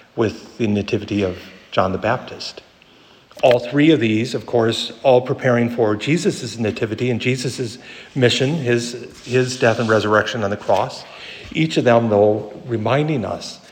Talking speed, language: 155 wpm, English